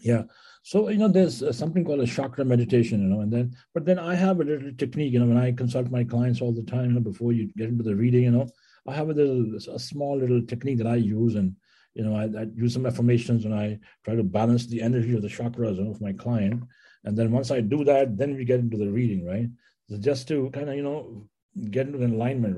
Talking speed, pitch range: 260 wpm, 110-140 Hz